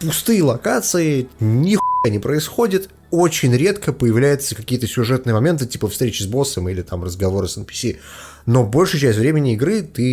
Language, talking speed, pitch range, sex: Russian, 155 wpm, 110-165 Hz, male